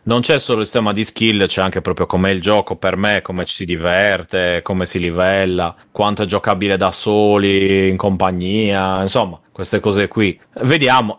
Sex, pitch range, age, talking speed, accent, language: male, 95-140 Hz, 30-49, 180 wpm, native, Italian